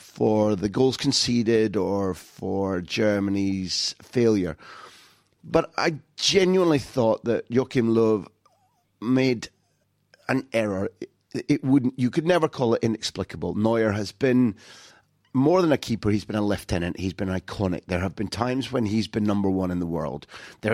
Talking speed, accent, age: 160 wpm, British, 30-49